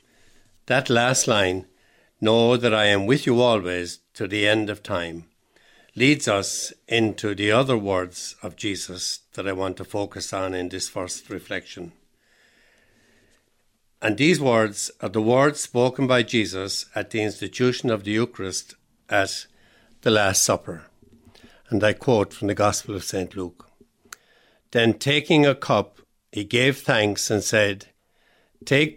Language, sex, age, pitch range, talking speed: English, male, 60-79, 100-125 Hz, 145 wpm